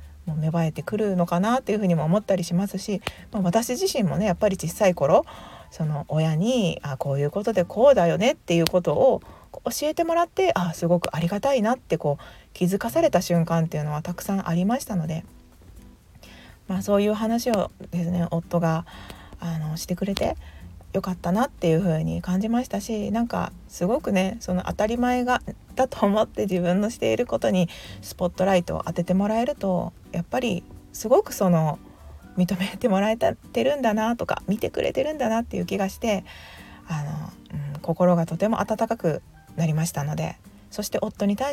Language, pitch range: Japanese, 165-215 Hz